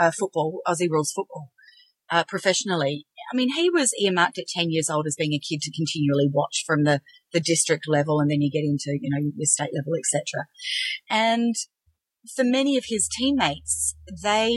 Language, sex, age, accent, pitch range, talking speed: English, female, 40-59, Australian, 165-230 Hz, 190 wpm